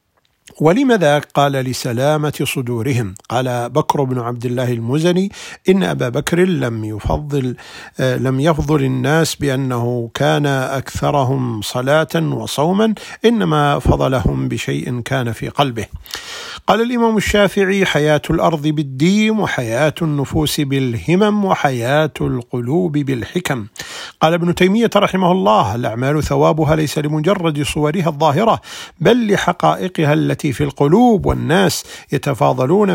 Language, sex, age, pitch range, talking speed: Arabic, male, 50-69, 130-175 Hz, 105 wpm